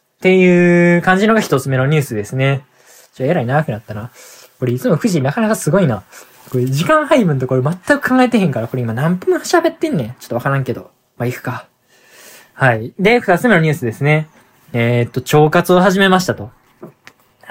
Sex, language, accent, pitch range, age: male, Japanese, native, 125-185 Hz, 20-39